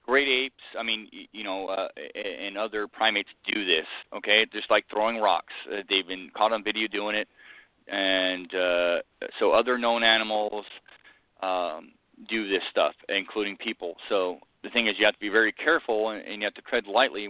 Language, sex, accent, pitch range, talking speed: English, male, American, 95-120 Hz, 185 wpm